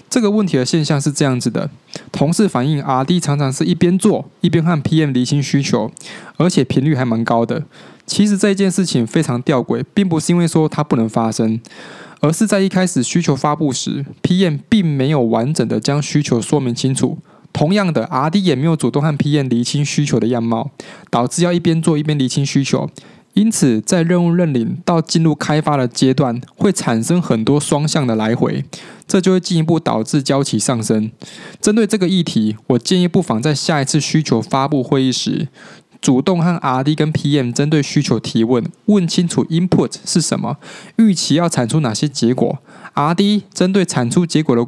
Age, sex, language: 20-39, male, English